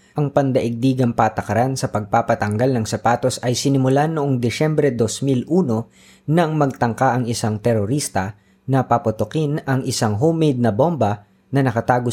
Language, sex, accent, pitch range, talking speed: Filipino, female, native, 105-140 Hz, 130 wpm